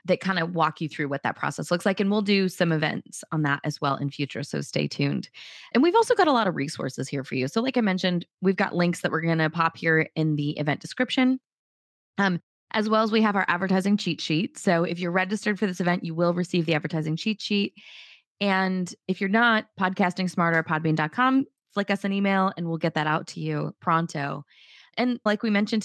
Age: 20-39